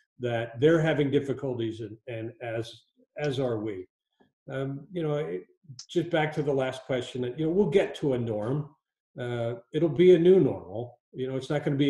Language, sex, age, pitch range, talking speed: English, male, 40-59, 120-160 Hz, 205 wpm